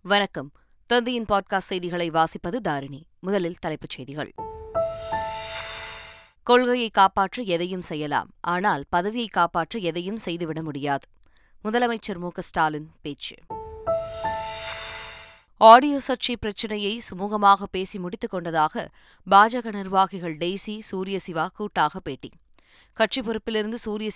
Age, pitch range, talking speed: 20-39, 165-220 Hz, 90 wpm